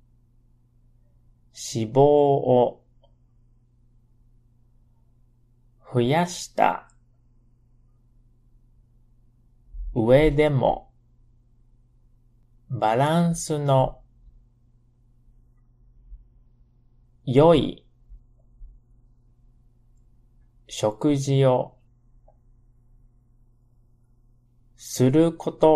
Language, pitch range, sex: Japanese, 120-125 Hz, male